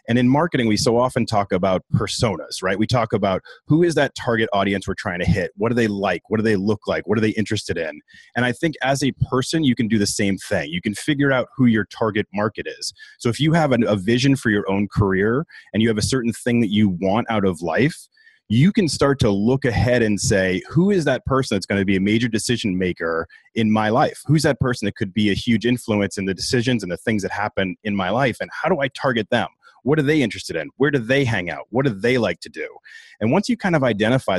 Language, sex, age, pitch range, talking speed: English, male, 30-49, 100-130 Hz, 260 wpm